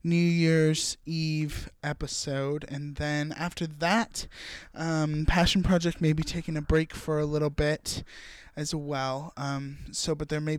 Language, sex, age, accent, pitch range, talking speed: English, male, 20-39, American, 140-160 Hz, 155 wpm